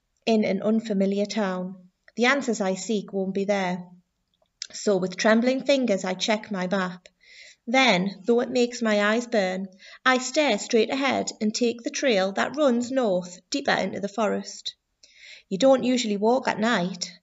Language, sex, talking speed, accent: English, female, 165 wpm, British